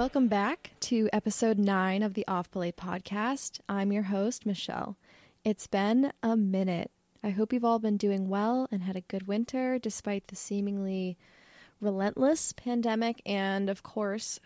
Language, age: English, 20-39